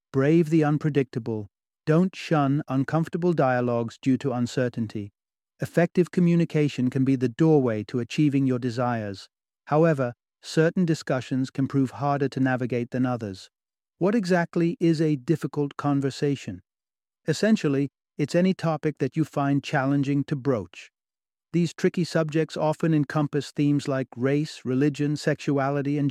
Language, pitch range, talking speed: English, 130-155 Hz, 130 wpm